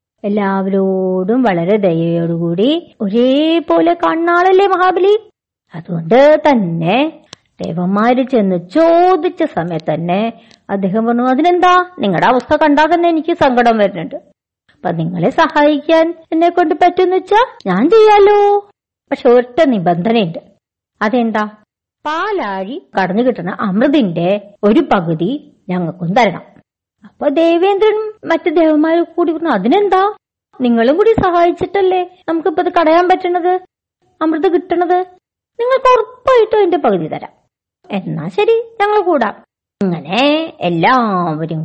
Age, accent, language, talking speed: 50-69, native, Malayalam, 95 wpm